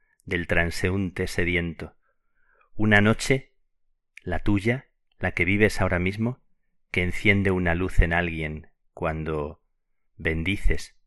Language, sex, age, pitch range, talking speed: Spanish, male, 40-59, 85-105 Hz, 110 wpm